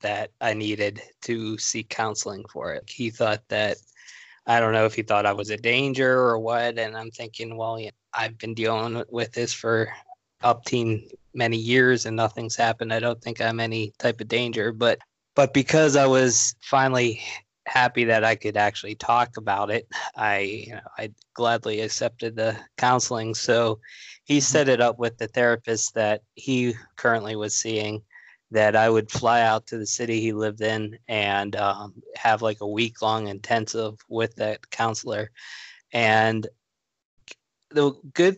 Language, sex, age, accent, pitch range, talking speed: English, male, 20-39, American, 110-125 Hz, 170 wpm